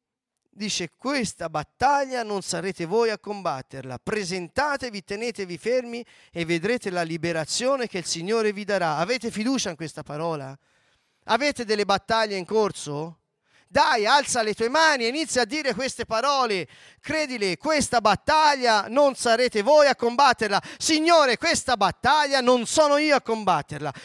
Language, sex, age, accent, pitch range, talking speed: Italian, male, 40-59, native, 195-290 Hz, 140 wpm